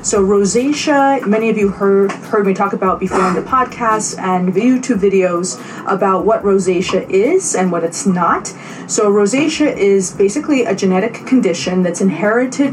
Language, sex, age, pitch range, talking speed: English, female, 30-49, 185-220 Hz, 165 wpm